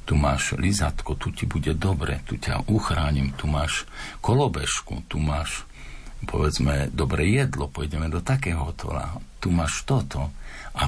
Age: 60-79